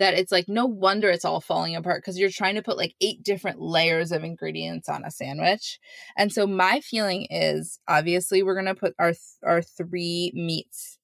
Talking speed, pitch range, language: 205 wpm, 170-215 Hz, English